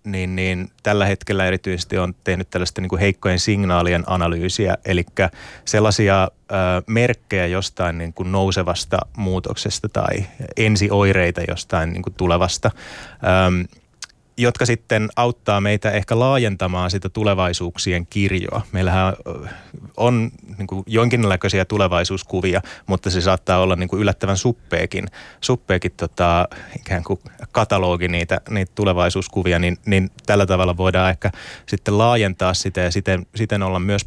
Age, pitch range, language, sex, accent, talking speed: 30-49, 90-105 Hz, Finnish, male, native, 125 wpm